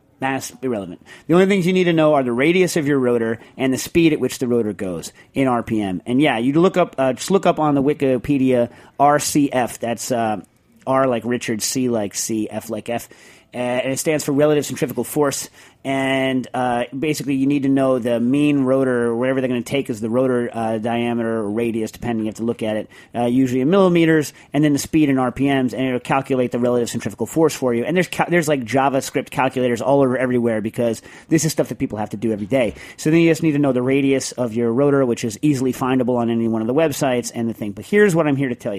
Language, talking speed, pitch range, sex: English, 245 wpm, 120-150 Hz, male